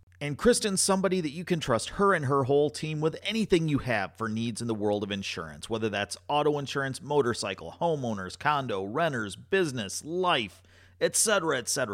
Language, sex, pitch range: English, male, 100-145 Hz